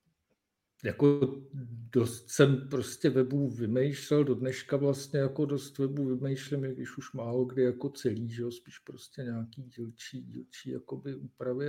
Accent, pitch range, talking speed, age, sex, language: native, 120-140 Hz, 155 wpm, 50-69, male, Czech